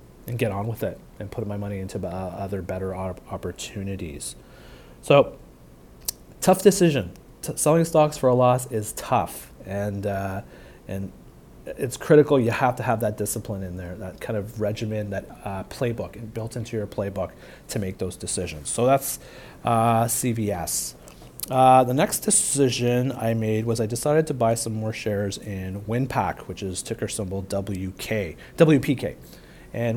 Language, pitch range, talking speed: English, 100-125 Hz, 160 wpm